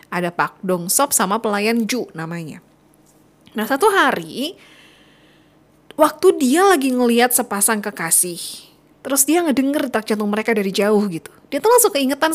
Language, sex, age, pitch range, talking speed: Indonesian, female, 20-39, 195-280 Hz, 145 wpm